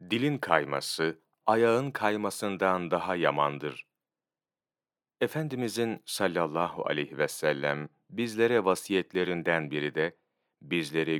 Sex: male